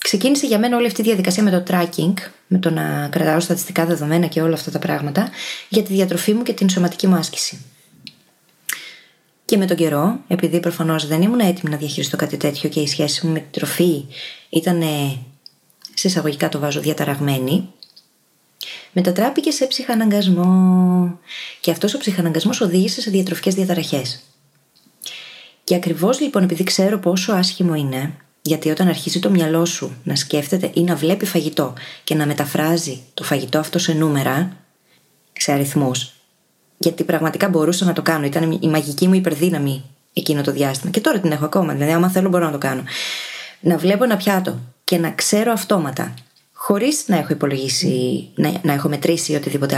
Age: 20-39